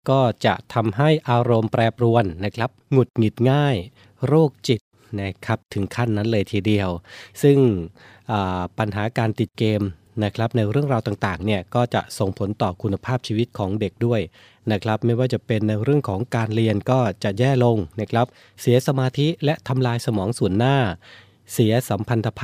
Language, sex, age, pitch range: Thai, male, 20-39, 105-125 Hz